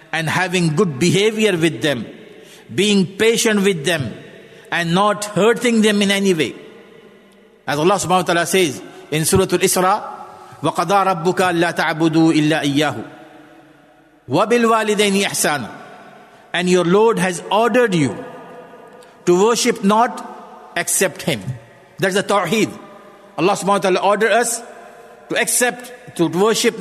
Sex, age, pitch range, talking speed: male, 50-69, 170-225 Hz, 130 wpm